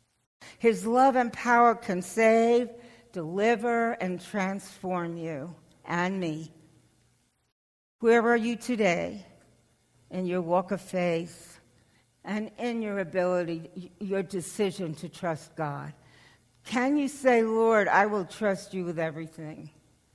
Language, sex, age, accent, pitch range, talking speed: English, female, 60-79, American, 165-220 Hz, 120 wpm